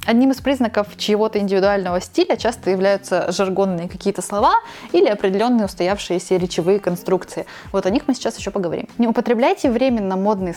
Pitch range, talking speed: 185-240 Hz, 160 wpm